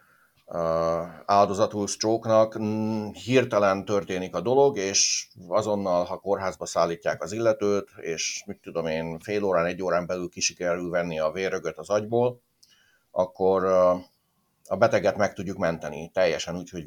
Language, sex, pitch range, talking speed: Hungarian, male, 90-110 Hz, 145 wpm